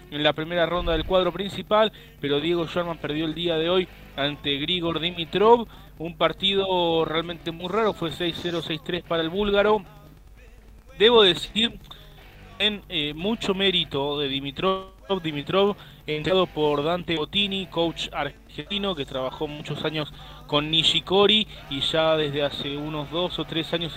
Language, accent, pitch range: Spanish, Argentinian, 155-185 Hz